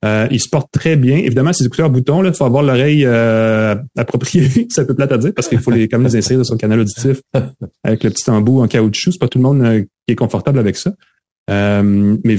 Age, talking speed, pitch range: 30-49, 250 wpm, 110-130 Hz